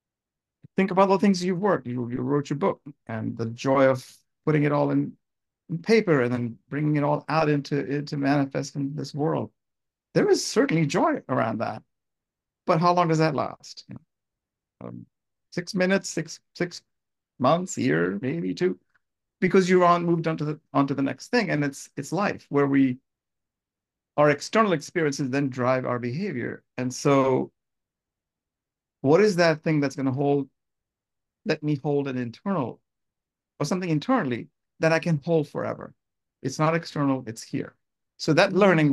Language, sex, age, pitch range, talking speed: English, male, 50-69, 125-160 Hz, 170 wpm